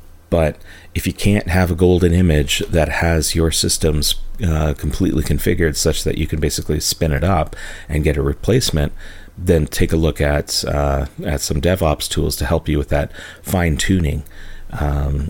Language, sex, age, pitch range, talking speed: English, male, 30-49, 75-85 Hz, 175 wpm